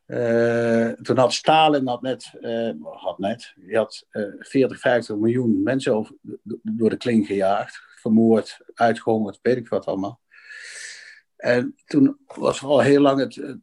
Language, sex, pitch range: Dutch, male, 115-140 Hz